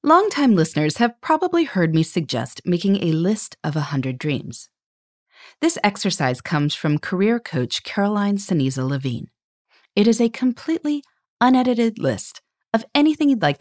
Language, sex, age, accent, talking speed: English, female, 30-49, American, 150 wpm